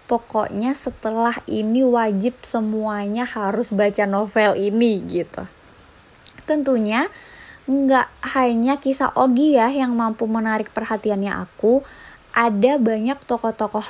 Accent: native